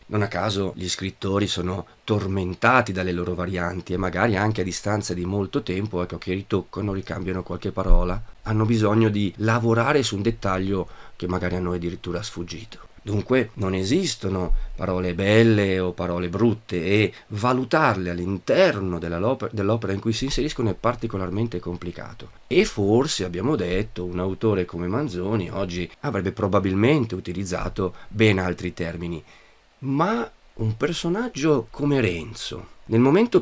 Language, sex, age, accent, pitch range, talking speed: Italian, male, 40-59, native, 90-125 Hz, 140 wpm